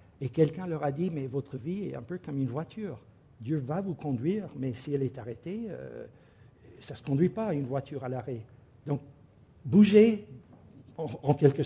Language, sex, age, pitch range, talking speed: English, male, 60-79, 125-170 Hz, 195 wpm